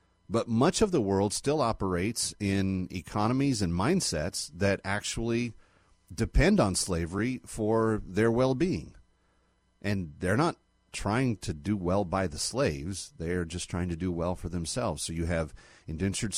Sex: male